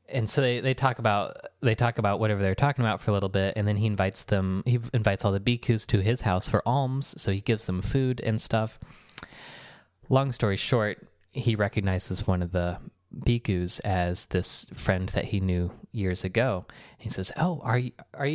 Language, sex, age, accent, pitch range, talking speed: English, male, 20-39, American, 100-130 Hz, 205 wpm